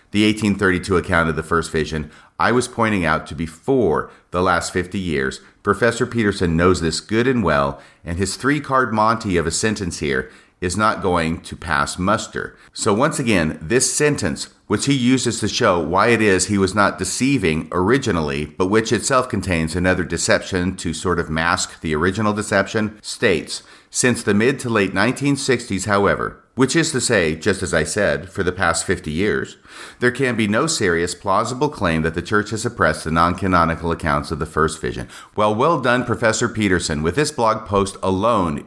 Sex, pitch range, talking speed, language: male, 85-115 Hz, 185 wpm, English